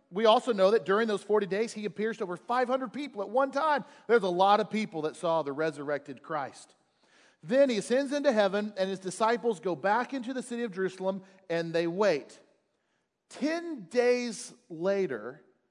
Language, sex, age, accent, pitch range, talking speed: English, male, 40-59, American, 185-240 Hz, 185 wpm